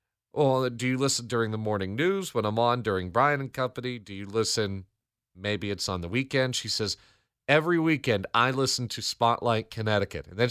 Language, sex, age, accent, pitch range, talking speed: English, male, 40-59, American, 105-130 Hz, 195 wpm